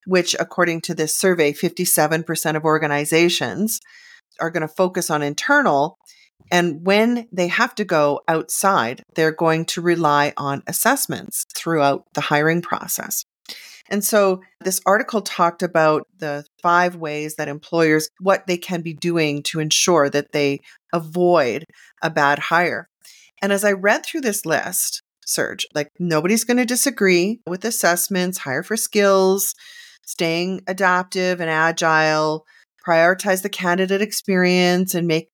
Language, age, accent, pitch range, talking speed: English, 40-59, American, 165-205 Hz, 140 wpm